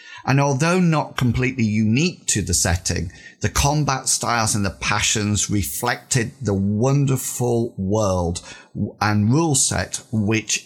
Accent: British